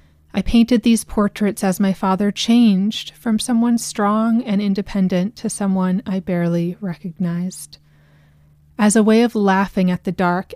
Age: 30-49